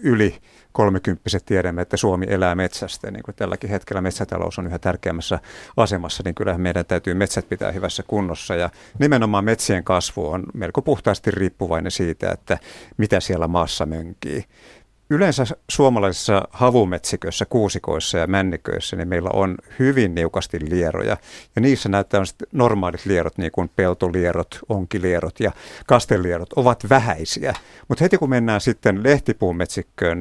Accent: native